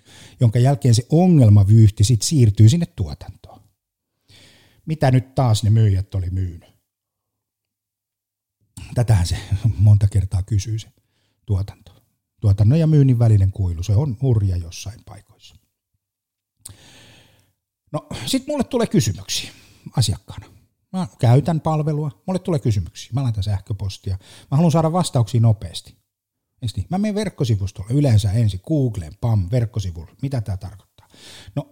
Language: Finnish